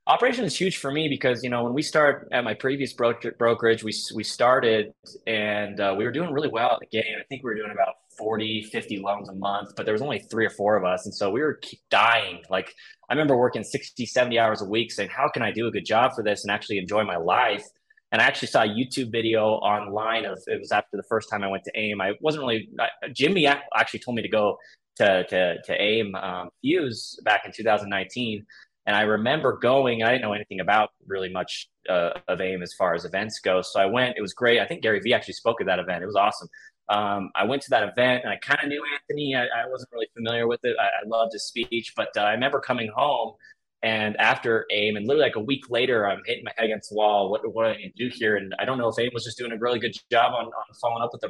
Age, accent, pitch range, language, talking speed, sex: 20-39, American, 105-125 Hz, English, 265 wpm, male